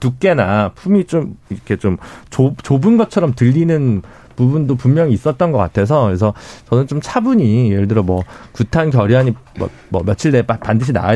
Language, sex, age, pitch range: Korean, male, 40-59, 115-170 Hz